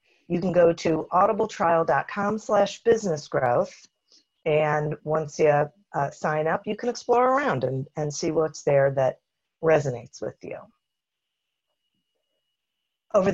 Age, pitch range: 50-69, 145-175 Hz